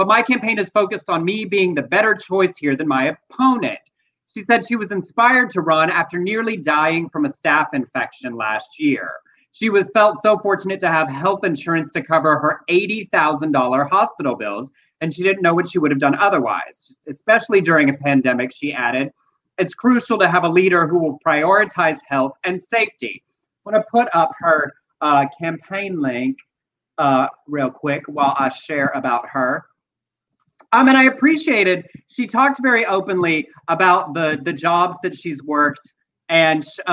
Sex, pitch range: male, 160-215 Hz